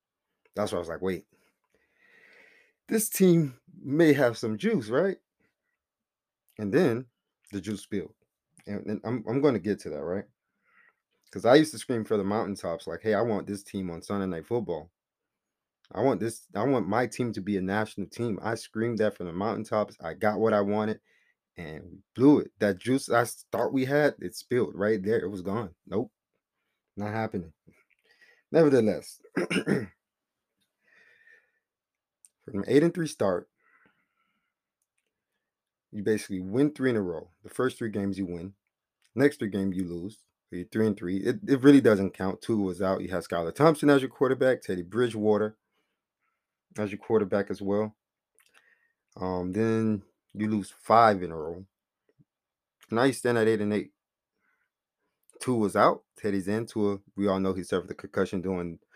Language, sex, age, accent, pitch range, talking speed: English, male, 30-49, American, 100-130 Hz, 170 wpm